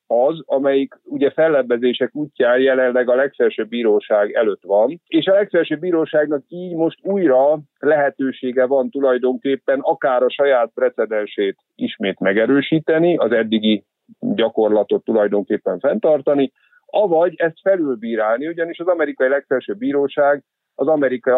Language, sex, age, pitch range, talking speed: Hungarian, male, 50-69, 125-160 Hz, 120 wpm